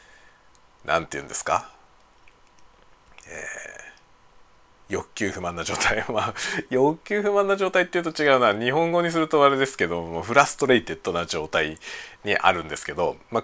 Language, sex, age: Japanese, male, 40-59